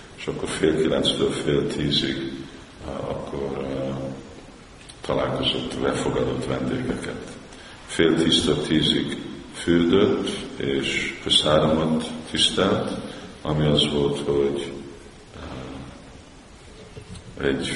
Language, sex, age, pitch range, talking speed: Hungarian, male, 50-69, 70-75 Hz, 75 wpm